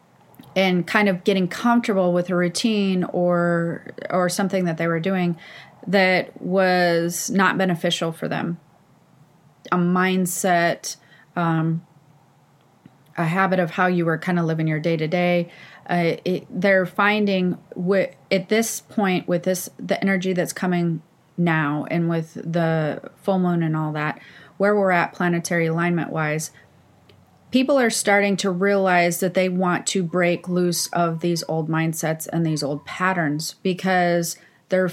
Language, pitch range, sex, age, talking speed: English, 170-195 Hz, female, 30-49, 145 wpm